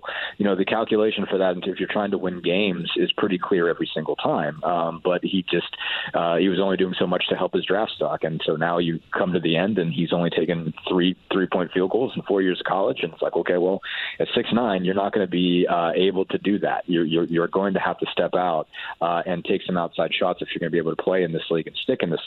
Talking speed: 275 wpm